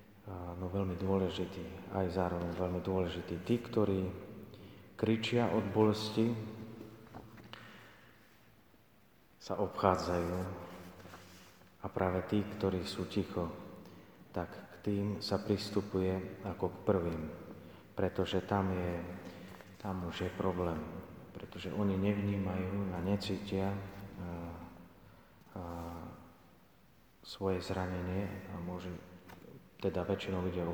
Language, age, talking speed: Slovak, 30-49, 95 wpm